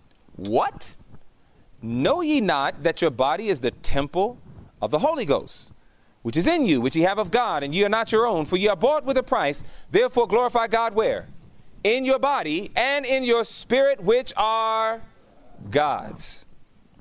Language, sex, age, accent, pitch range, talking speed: English, male, 30-49, American, 175-245 Hz, 175 wpm